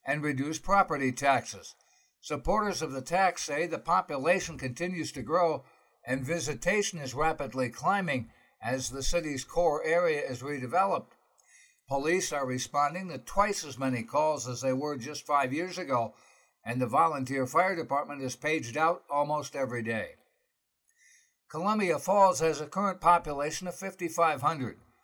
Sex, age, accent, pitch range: male, 60-79, American, 130-170 Hz